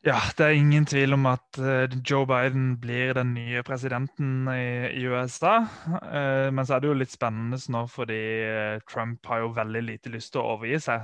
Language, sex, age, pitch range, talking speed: English, male, 20-39, 115-130 Hz, 190 wpm